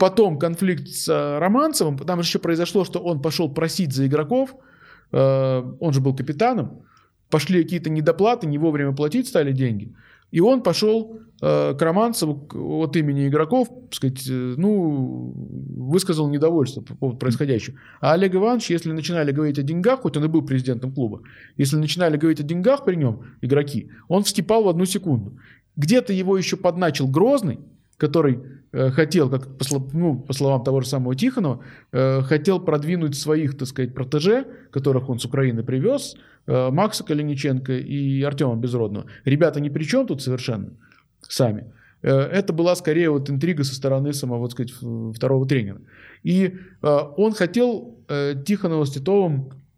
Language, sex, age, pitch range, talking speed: Russian, male, 20-39, 130-180 Hz, 160 wpm